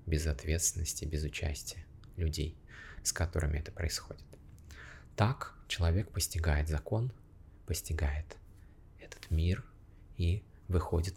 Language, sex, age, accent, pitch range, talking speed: Russian, male, 20-39, native, 80-100 Hz, 90 wpm